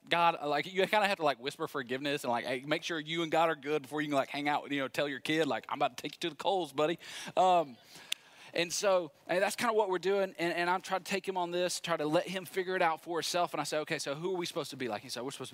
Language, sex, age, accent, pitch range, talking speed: English, male, 30-49, American, 120-170 Hz, 330 wpm